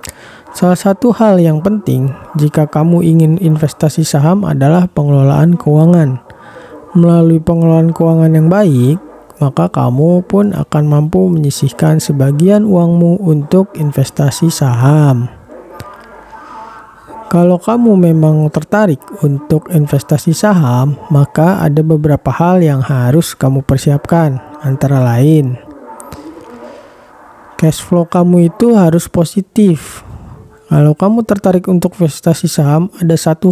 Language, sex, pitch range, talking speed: Indonesian, male, 145-175 Hz, 105 wpm